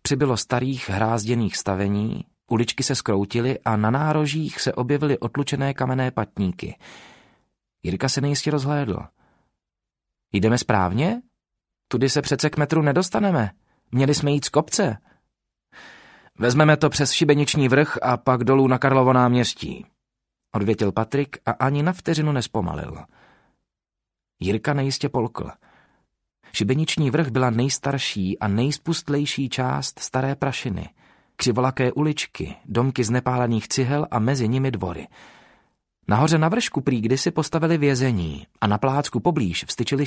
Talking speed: 125 wpm